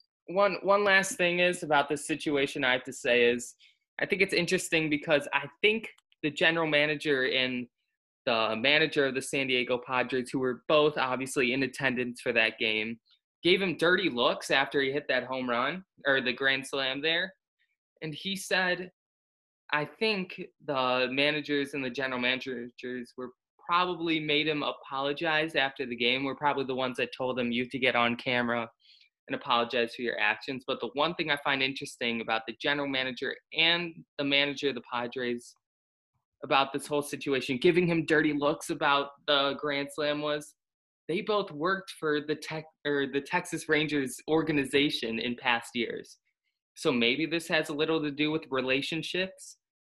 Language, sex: English, male